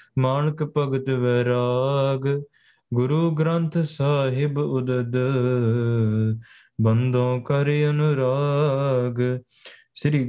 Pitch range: 130-150 Hz